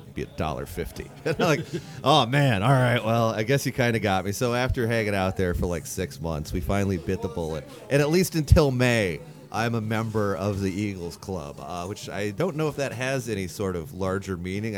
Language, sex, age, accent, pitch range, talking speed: English, male, 30-49, American, 95-130 Hz, 215 wpm